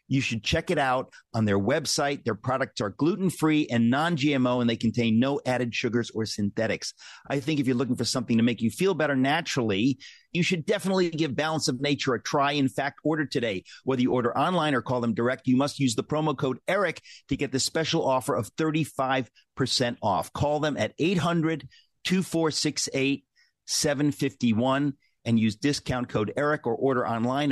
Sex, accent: male, American